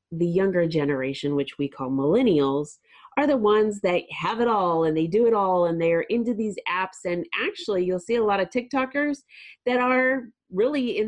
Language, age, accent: English, 30-49, American